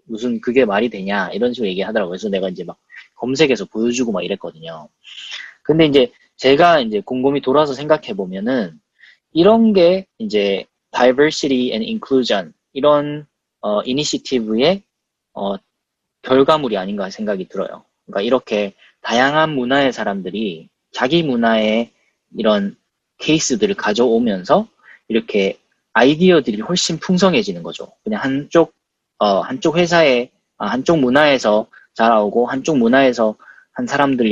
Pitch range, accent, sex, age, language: 115-175 Hz, native, male, 20-39, Korean